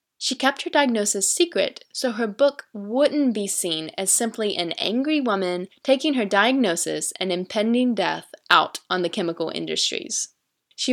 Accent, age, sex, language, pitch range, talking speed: American, 10-29, female, English, 195-255 Hz, 155 wpm